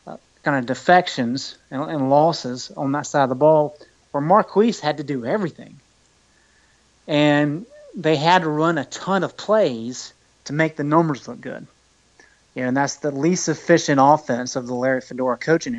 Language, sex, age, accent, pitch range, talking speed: English, male, 30-49, American, 130-175 Hz, 165 wpm